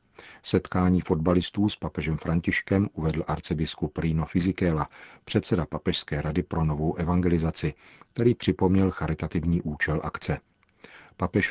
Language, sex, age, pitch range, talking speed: Czech, male, 50-69, 80-95 Hz, 110 wpm